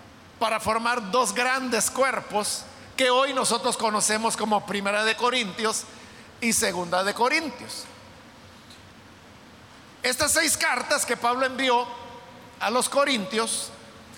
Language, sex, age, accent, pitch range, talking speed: Spanish, male, 50-69, Mexican, 210-265 Hz, 110 wpm